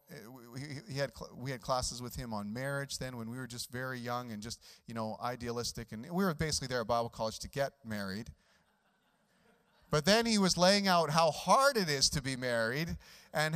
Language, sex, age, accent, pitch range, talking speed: English, male, 40-59, American, 110-150 Hz, 205 wpm